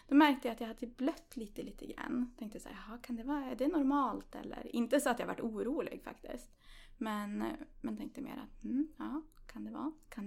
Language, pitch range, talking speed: English, 205-265 Hz, 220 wpm